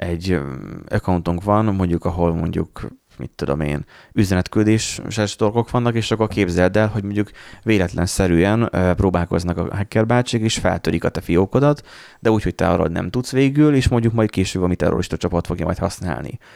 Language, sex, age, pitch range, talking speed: Hungarian, male, 30-49, 85-105 Hz, 165 wpm